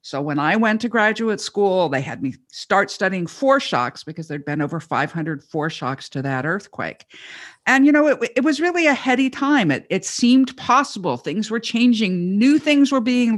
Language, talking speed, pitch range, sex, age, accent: English, 195 wpm, 155-225 Hz, female, 50-69, American